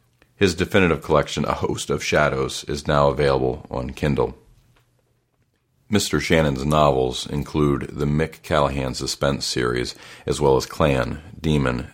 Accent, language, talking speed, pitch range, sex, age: American, English, 130 wpm, 65-75 Hz, male, 40-59